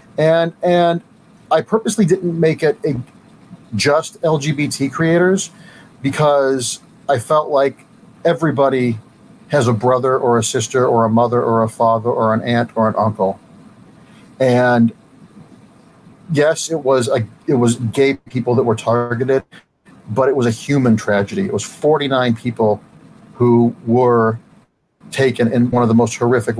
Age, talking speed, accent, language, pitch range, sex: 40-59, 145 wpm, American, English, 115-150 Hz, male